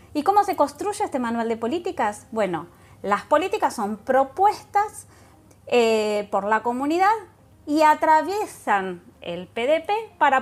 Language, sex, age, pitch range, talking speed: Spanish, female, 20-39, 215-300 Hz, 125 wpm